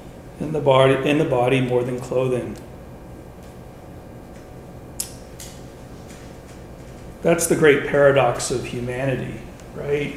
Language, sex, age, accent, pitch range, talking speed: English, male, 40-59, American, 120-140 Hz, 95 wpm